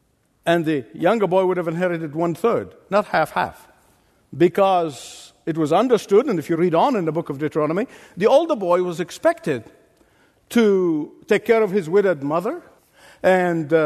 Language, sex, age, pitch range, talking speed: English, male, 50-69, 175-275 Hz, 165 wpm